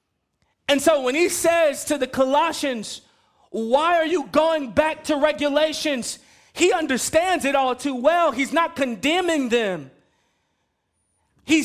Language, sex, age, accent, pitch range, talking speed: English, male, 30-49, American, 245-305 Hz, 135 wpm